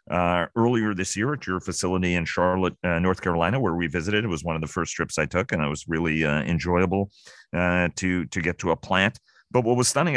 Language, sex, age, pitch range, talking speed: English, male, 40-59, 85-100 Hz, 240 wpm